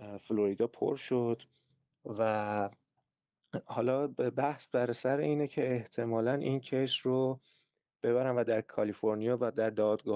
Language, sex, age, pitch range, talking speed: Persian, male, 30-49, 110-135 Hz, 125 wpm